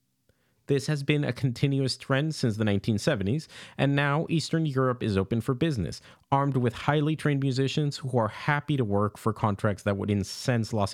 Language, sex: English, male